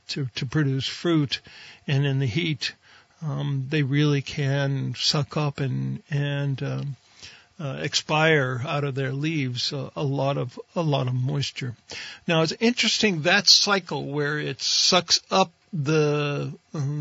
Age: 60-79